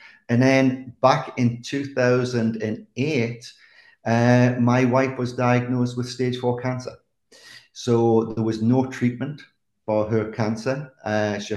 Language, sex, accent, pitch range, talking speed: English, male, British, 110-125 Hz, 125 wpm